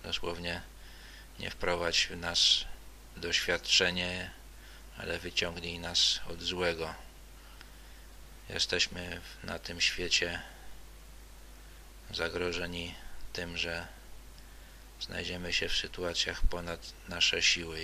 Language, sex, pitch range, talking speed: Polish, male, 85-90 Hz, 85 wpm